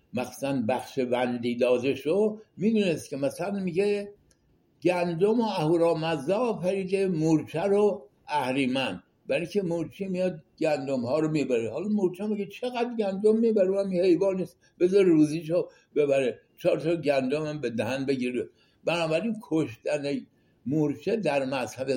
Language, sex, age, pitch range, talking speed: English, male, 60-79, 135-200 Hz, 130 wpm